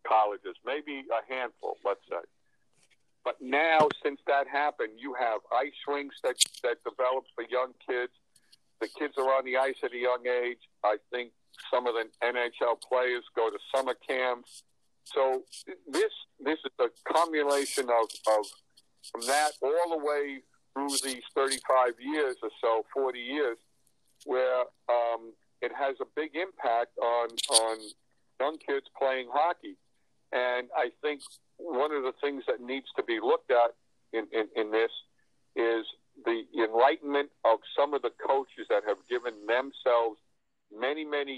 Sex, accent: male, American